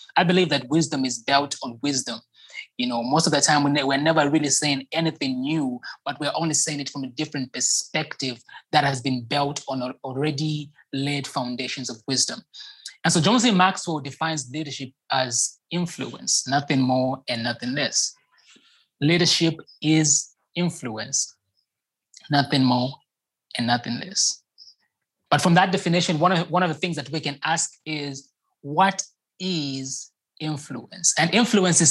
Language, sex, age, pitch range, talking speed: English, male, 20-39, 135-165 Hz, 155 wpm